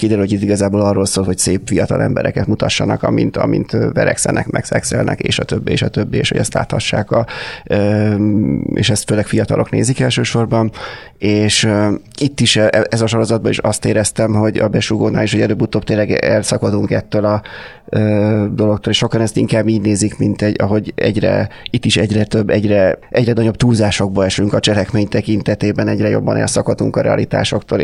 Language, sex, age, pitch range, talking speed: Hungarian, male, 30-49, 95-110 Hz, 170 wpm